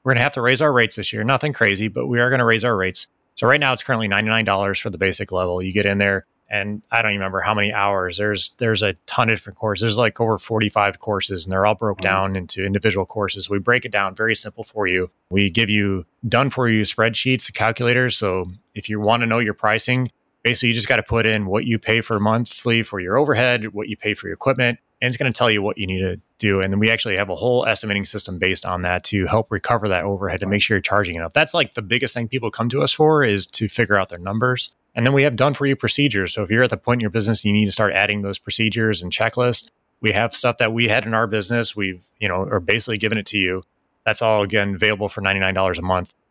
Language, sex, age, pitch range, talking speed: English, male, 20-39, 100-115 Hz, 270 wpm